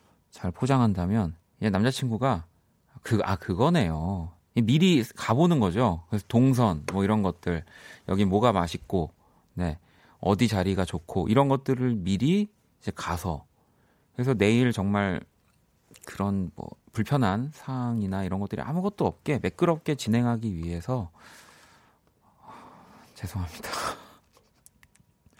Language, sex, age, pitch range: Korean, male, 40-59, 90-125 Hz